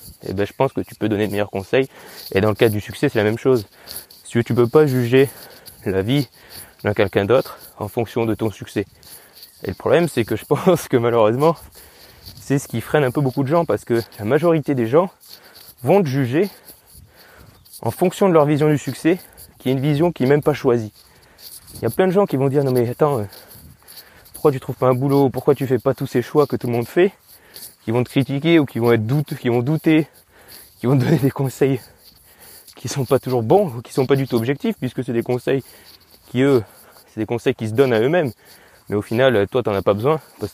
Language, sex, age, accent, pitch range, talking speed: French, male, 20-39, French, 110-145 Hz, 245 wpm